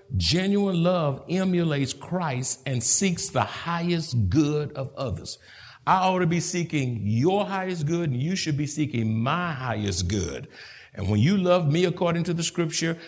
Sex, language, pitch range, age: male, English, 130-180 Hz, 60-79